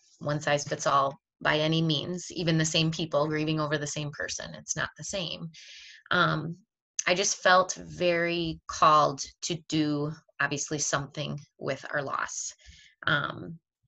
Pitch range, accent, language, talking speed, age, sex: 145-165 Hz, American, English, 135 wpm, 20-39, female